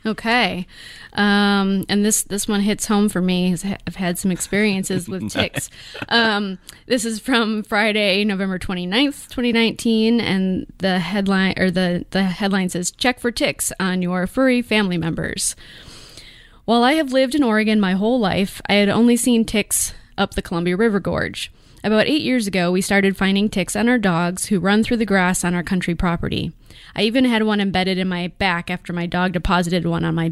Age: 20-39